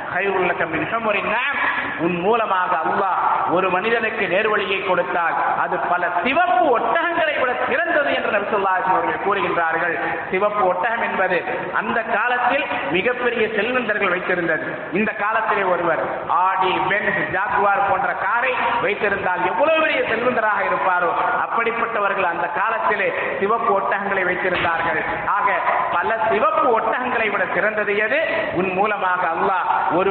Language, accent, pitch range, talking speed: English, Indian, 170-210 Hz, 105 wpm